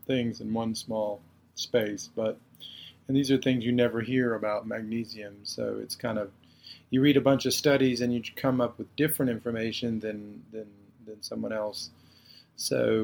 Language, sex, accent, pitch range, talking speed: English, male, American, 110-130 Hz, 175 wpm